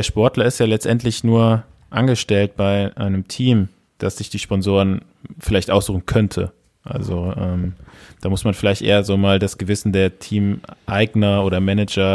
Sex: male